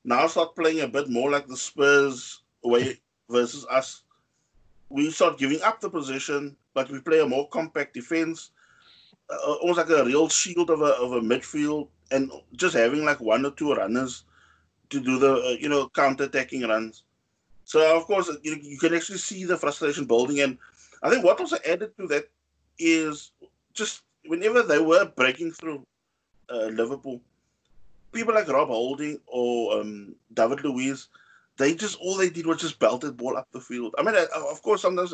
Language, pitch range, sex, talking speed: English, 130-170 Hz, male, 185 wpm